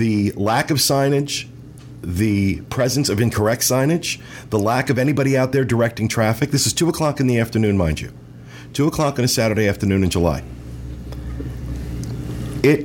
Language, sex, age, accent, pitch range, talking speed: English, male, 40-59, American, 90-140 Hz, 165 wpm